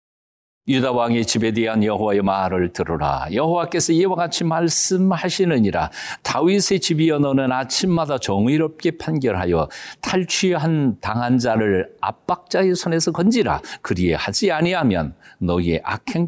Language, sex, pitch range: Korean, male, 110-175 Hz